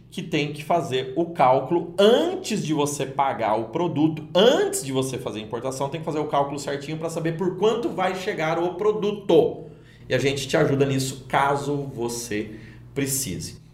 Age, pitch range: 30-49, 120-160 Hz